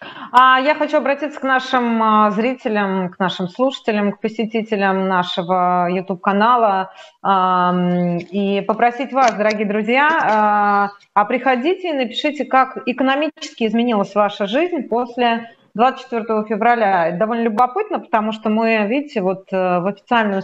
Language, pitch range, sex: Russian, 200-240 Hz, female